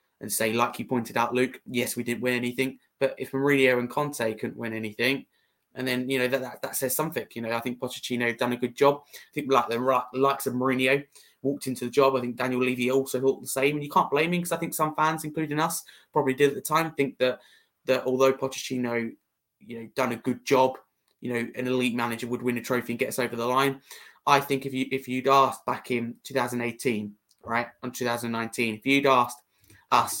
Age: 20-39